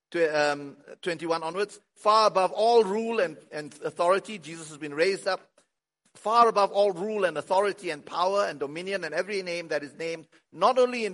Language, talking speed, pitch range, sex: English, 190 wpm, 160-245 Hz, male